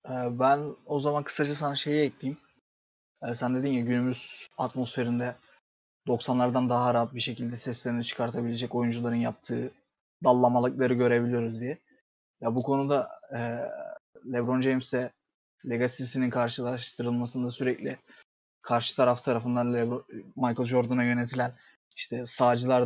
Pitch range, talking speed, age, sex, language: 120-130 Hz, 110 wpm, 30-49, male, Turkish